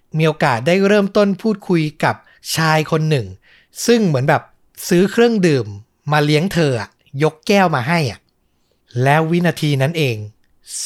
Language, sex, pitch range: Thai, male, 135-175 Hz